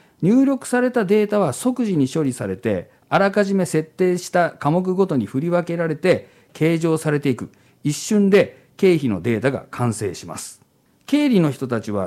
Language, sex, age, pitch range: Japanese, male, 50-69, 130-205 Hz